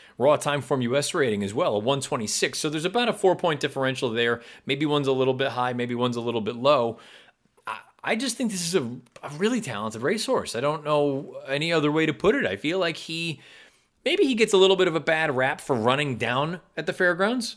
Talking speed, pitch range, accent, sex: 230 wpm, 110-160 Hz, American, male